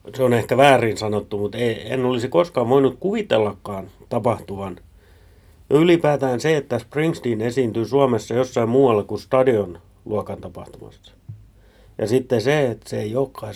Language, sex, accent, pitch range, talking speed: Finnish, male, native, 100-130 Hz, 135 wpm